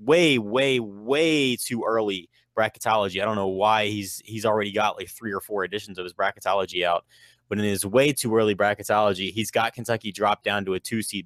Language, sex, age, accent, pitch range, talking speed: English, male, 20-39, American, 95-115 Hz, 210 wpm